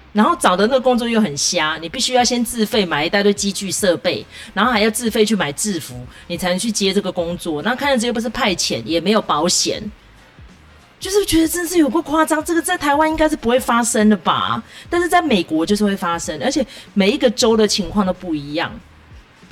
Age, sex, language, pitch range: 30-49, female, Chinese, 185-270 Hz